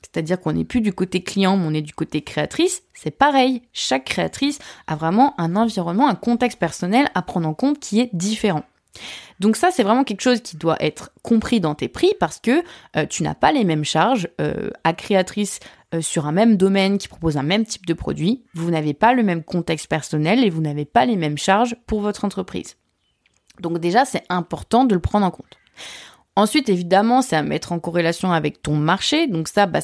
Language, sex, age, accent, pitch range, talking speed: French, female, 20-39, French, 170-235 Hz, 215 wpm